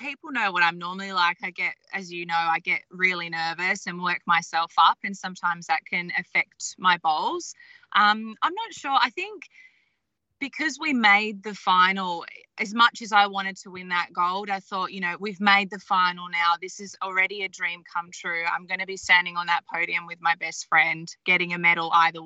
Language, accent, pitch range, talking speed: English, Australian, 175-205 Hz, 210 wpm